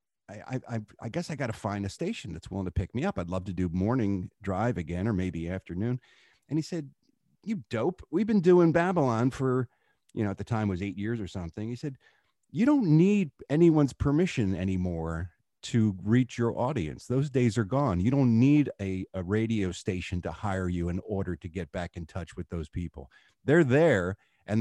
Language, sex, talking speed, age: English, male, 205 wpm, 50-69